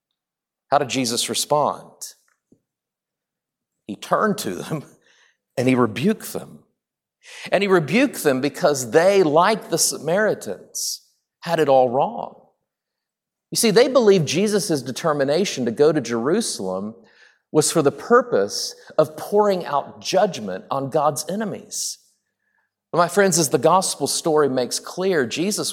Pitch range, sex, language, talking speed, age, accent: 140-220 Hz, male, English, 130 wpm, 50-69, American